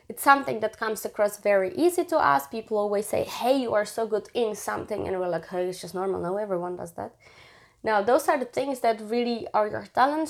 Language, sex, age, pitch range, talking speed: English, female, 20-39, 190-250 Hz, 235 wpm